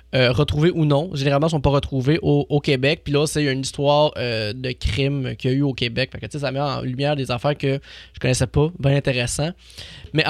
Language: French